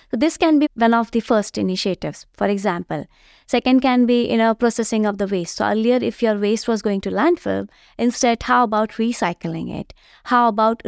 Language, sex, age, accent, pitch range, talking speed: English, female, 20-39, Indian, 210-280 Hz, 195 wpm